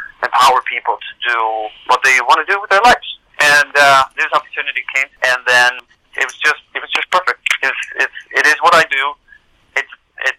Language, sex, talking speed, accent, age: English, male, 210 wpm, American, 40-59